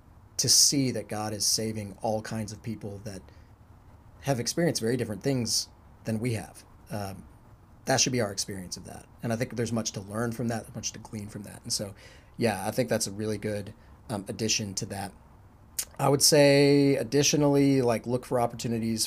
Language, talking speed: English, 195 wpm